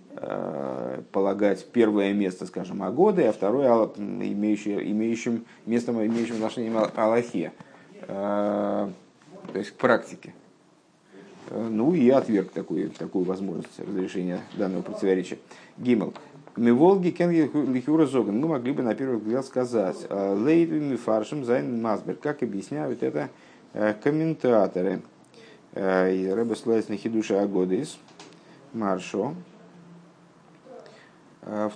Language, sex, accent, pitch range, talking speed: Russian, male, native, 100-130 Hz, 100 wpm